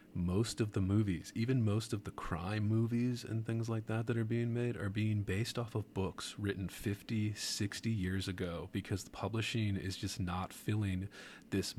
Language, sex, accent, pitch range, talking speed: English, male, American, 95-110 Hz, 190 wpm